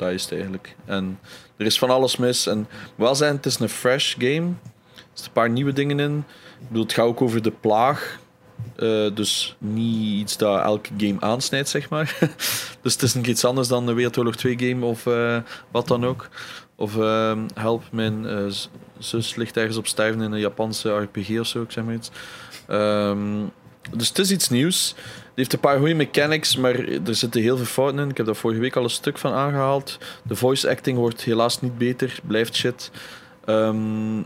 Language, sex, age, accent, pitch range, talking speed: Dutch, male, 20-39, Dutch, 110-135 Hz, 205 wpm